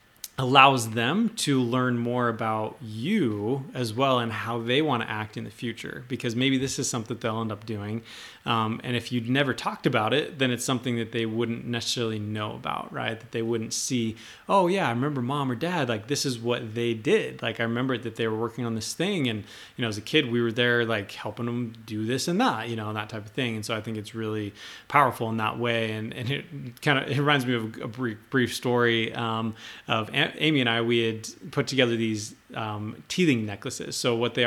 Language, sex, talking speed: English, male, 230 wpm